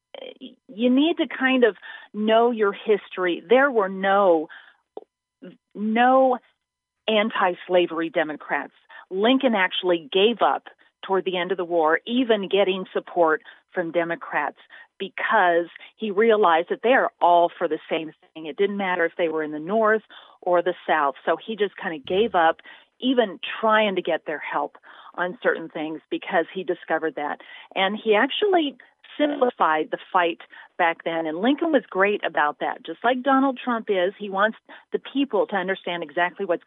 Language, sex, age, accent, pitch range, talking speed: English, female, 40-59, American, 170-220 Hz, 160 wpm